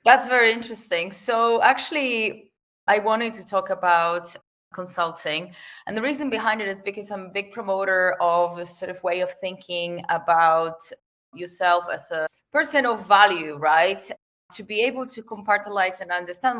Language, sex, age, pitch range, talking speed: English, female, 20-39, 175-215 Hz, 160 wpm